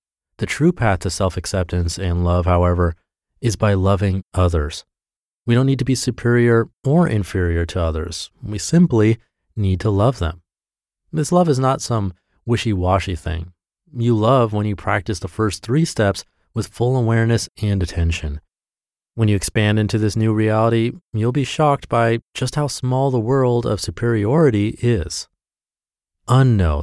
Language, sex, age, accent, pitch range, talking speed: English, male, 30-49, American, 90-120 Hz, 155 wpm